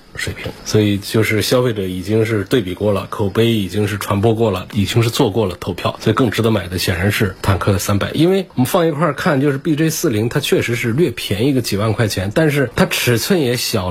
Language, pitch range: Chinese, 100-125 Hz